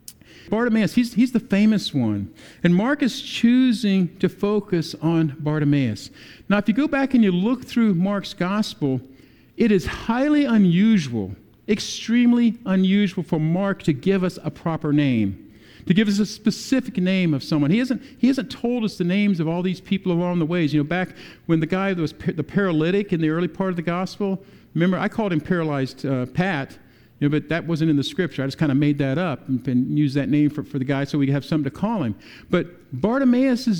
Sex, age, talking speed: male, 50-69, 210 wpm